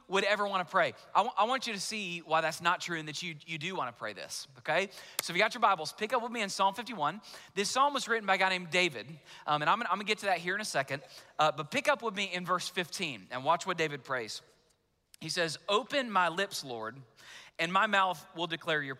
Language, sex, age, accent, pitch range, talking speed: English, male, 30-49, American, 155-205 Hz, 270 wpm